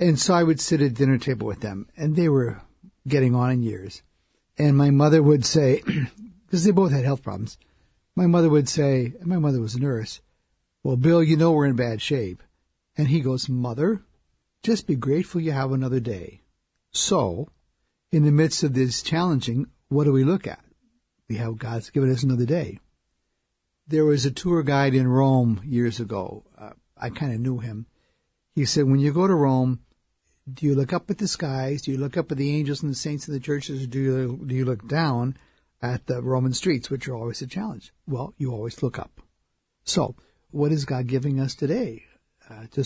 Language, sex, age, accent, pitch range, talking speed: English, male, 60-79, American, 120-150 Hz, 205 wpm